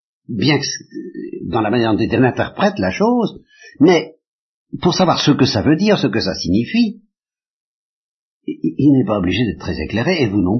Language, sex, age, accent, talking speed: French, male, 50-69, French, 180 wpm